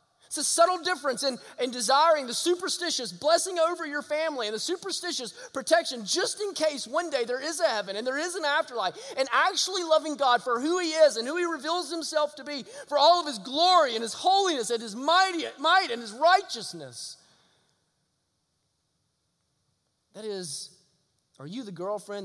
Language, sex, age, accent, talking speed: English, male, 30-49, American, 180 wpm